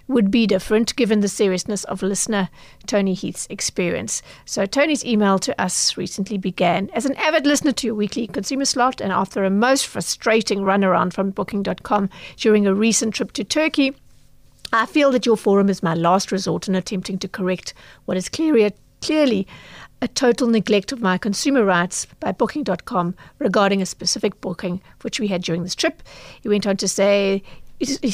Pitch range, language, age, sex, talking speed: 195-240 Hz, English, 50-69, female, 175 wpm